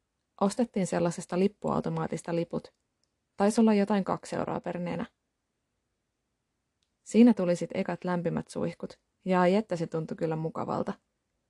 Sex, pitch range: female, 175-205 Hz